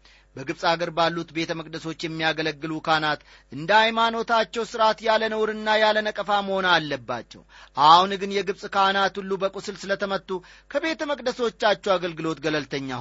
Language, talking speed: Amharic, 110 wpm